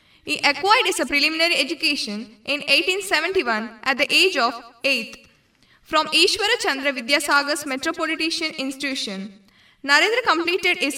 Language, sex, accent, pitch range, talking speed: Kannada, female, native, 245-325 Hz, 120 wpm